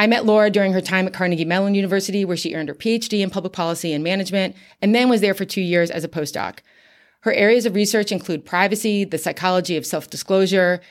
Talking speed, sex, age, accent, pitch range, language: 225 wpm, female, 30-49, American, 170-195 Hz, English